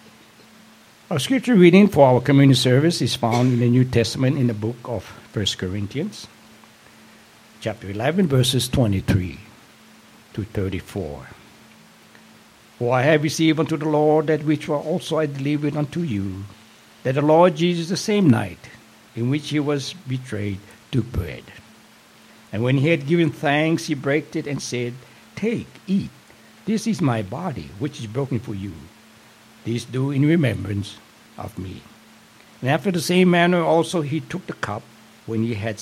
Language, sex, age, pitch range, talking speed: English, male, 60-79, 110-155 Hz, 155 wpm